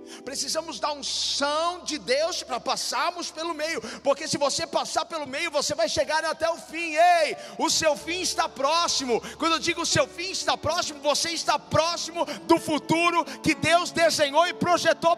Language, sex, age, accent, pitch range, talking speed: Portuguese, male, 50-69, Brazilian, 300-375 Hz, 180 wpm